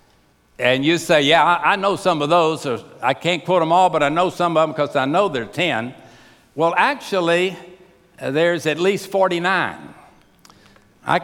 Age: 60-79